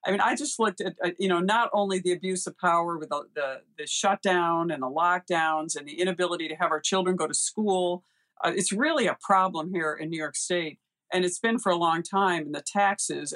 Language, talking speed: English, 230 wpm